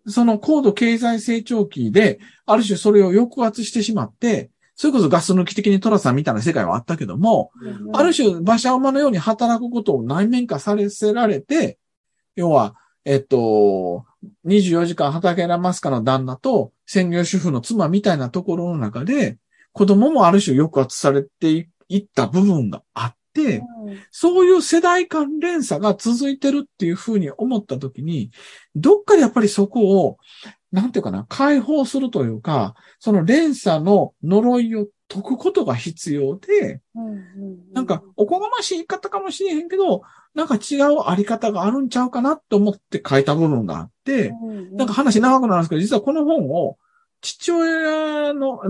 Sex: male